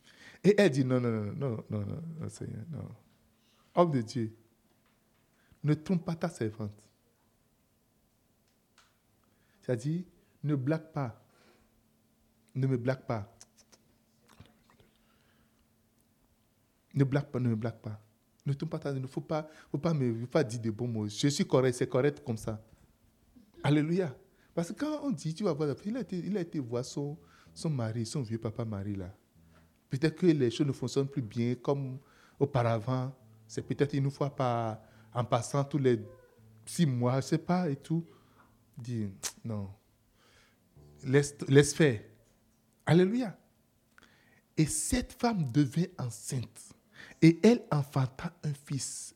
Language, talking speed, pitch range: French, 155 wpm, 115-155 Hz